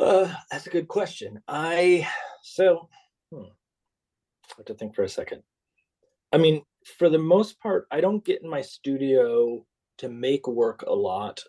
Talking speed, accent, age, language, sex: 165 wpm, American, 30-49, English, male